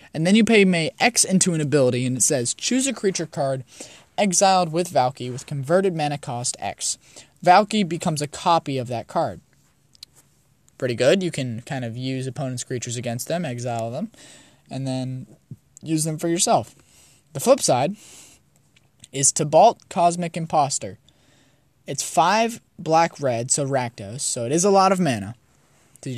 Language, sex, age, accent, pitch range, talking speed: English, male, 20-39, American, 130-175 Hz, 160 wpm